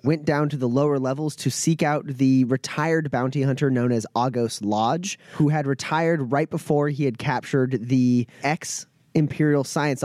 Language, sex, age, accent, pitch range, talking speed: English, male, 30-49, American, 125-155 Hz, 165 wpm